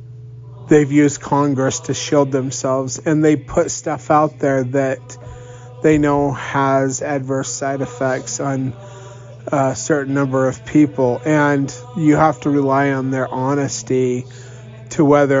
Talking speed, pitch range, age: 135 wpm, 125-145 Hz, 30-49